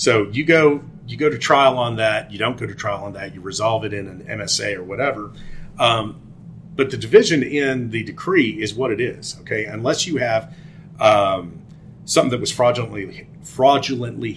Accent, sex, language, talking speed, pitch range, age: American, male, English, 190 wpm, 105-160 Hz, 30-49